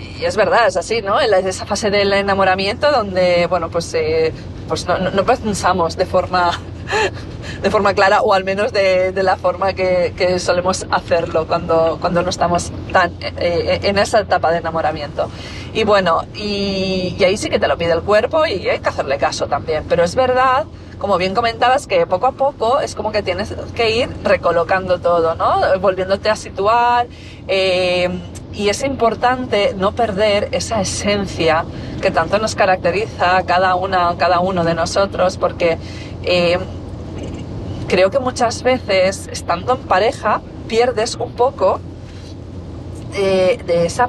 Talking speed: 160 wpm